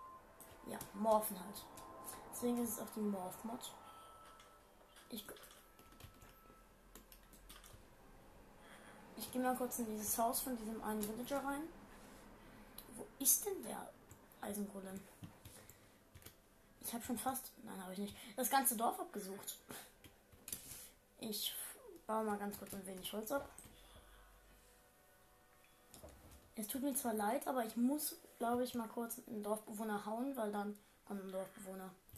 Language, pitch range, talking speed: German, 200-245 Hz, 125 wpm